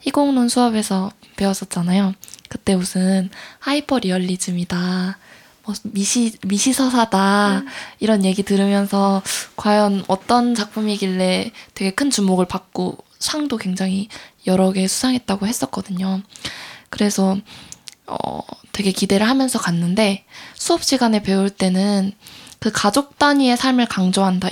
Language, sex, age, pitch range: Korean, female, 20-39, 190-240 Hz